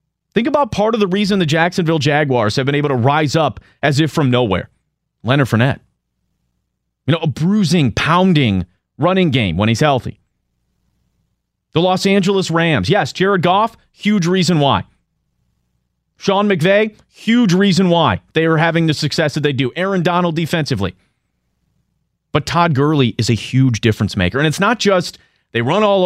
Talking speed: 165 wpm